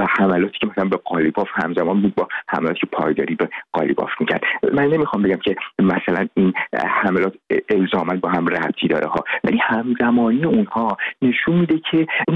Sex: male